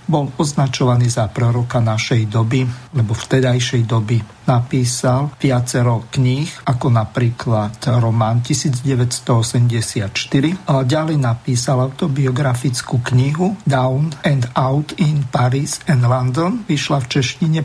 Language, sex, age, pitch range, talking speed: Slovak, male, 50-69, 125-155 Hz, 105 wpm